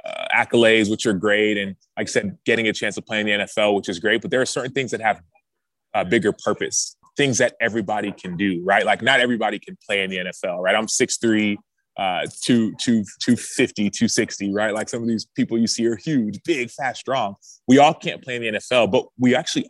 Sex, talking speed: male, 230 wpm